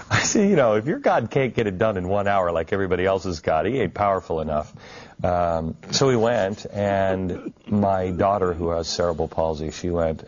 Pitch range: 80-95 Hz